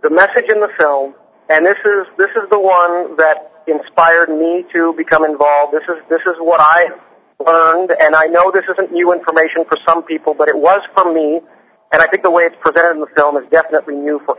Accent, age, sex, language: American, 40-59, male, English